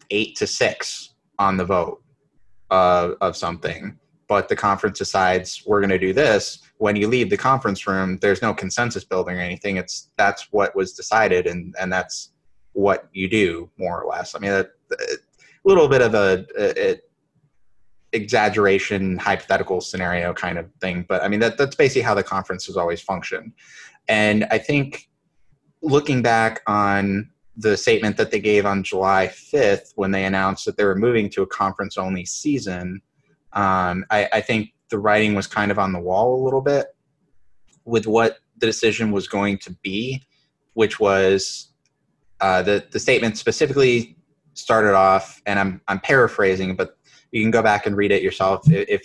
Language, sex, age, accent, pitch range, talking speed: English, male, 20-39, American, 95-120 Hz, 175 wpm